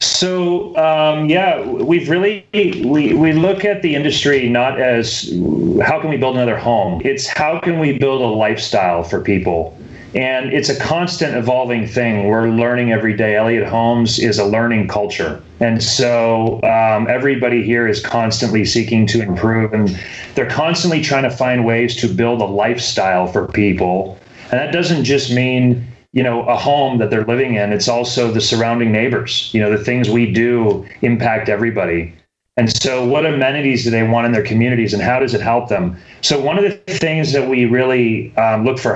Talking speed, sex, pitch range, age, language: 185 wpm, male, 110-135 Hz, 30-49, English